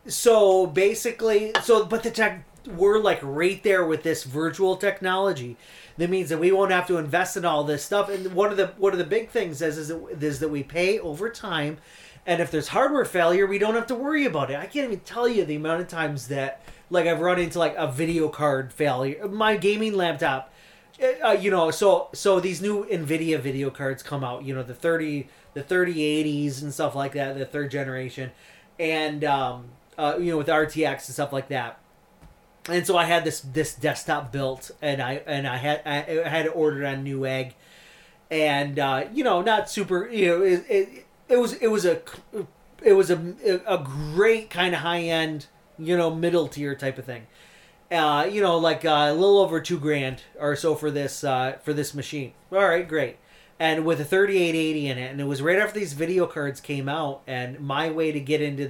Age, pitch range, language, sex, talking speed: 30-49, 145-185 Hz, English, male, 215 wpm